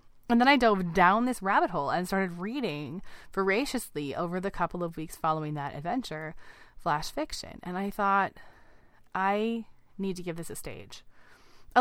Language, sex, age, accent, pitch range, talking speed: English, female, 20-39, American, 170-215 Hz, 170 wpm